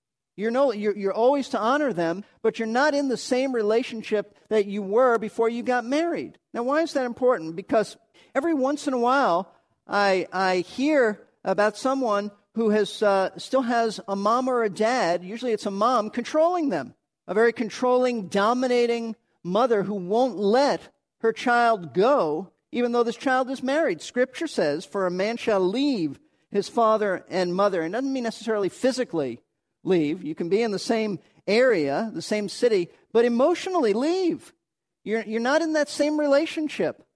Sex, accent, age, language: male, American, 50-69, English